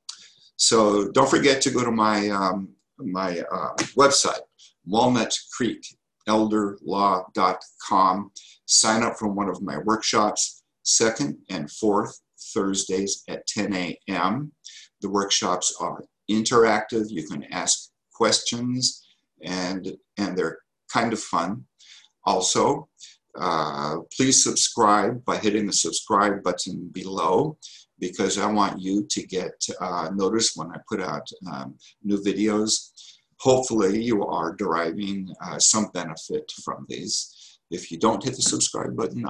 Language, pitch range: English, 95-110 Hz